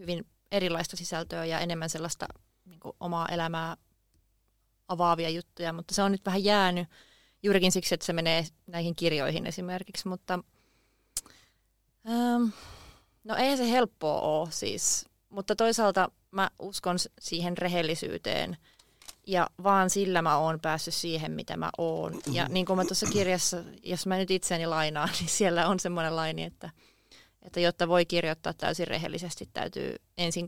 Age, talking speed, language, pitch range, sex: 30-49, 145 wpm, Finnish, 160-190 Hz, female